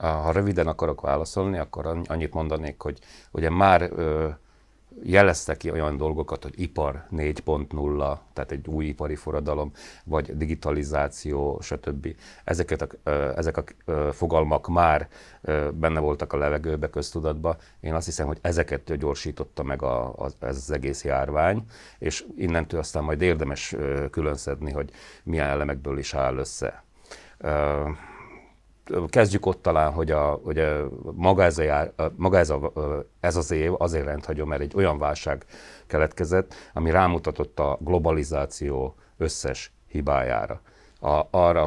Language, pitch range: Hungarian, 75-85 Hz